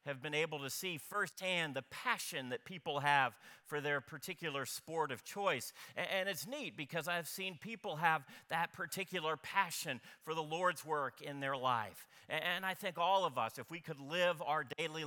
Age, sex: 40-59, male